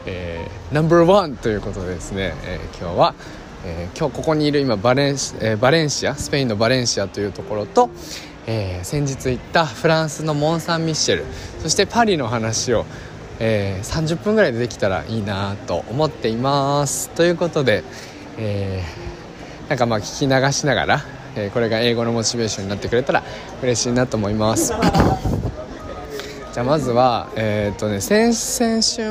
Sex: male